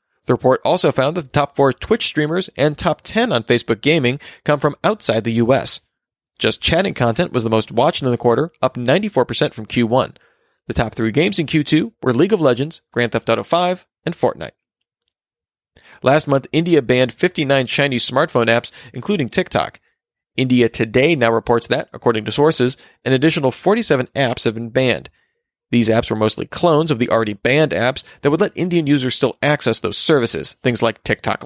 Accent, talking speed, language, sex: American, 185 wpm, English, male